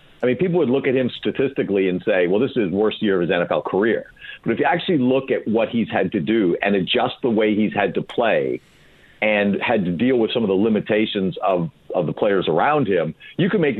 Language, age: English, 50-69